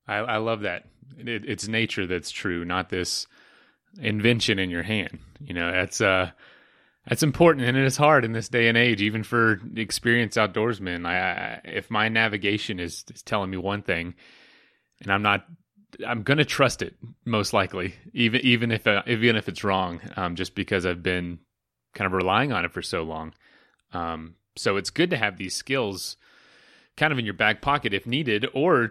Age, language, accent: 30-49, English, American